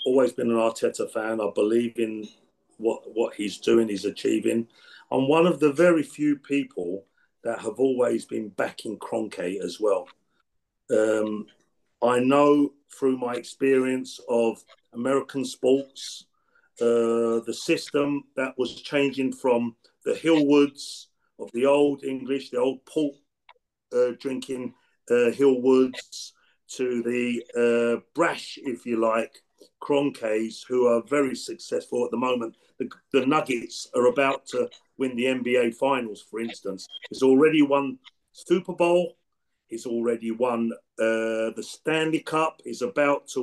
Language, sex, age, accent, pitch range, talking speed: English, male, 40-59, British, 120-155 Hz, 140 wpm